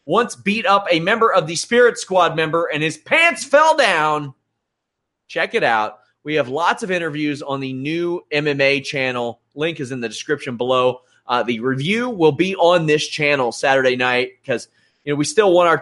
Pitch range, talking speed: 125-170 Hz, 195 wpm